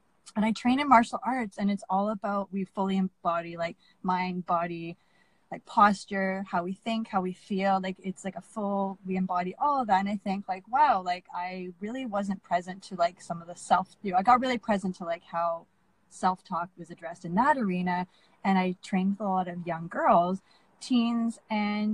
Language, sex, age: English, female, 20-39